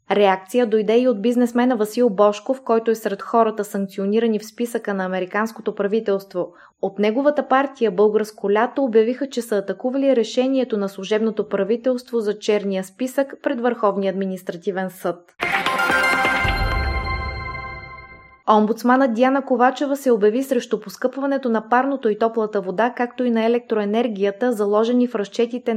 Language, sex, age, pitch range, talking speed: Bulgarian, female, 20-39, 200-245 Hz, 130 wpm